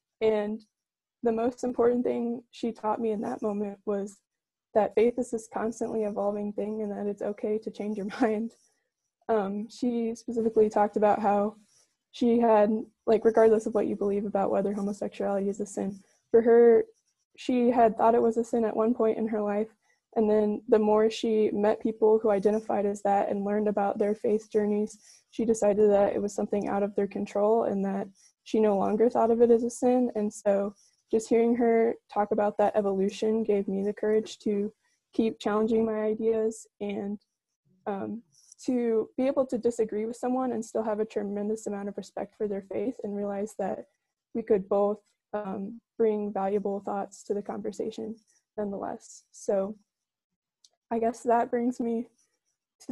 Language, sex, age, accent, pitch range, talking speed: English, female, 20-39, American, 205-230 Hz, 180 wpm